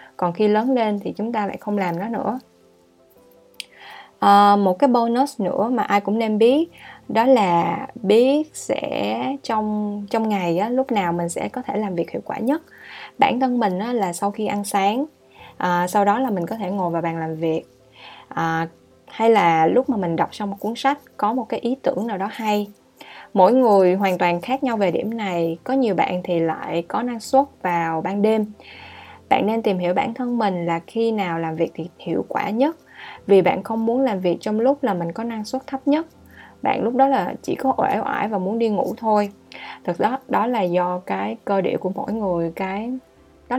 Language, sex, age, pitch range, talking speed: Vietnamese, female, 20-39, 180-240 Hz, 220 wpm